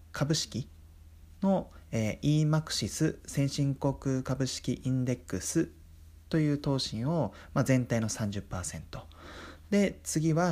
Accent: native